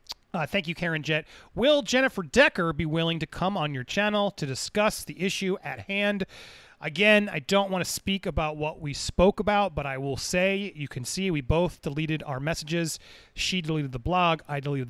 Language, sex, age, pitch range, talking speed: English, male, 30-49, 150-195 Hz, 200 wpm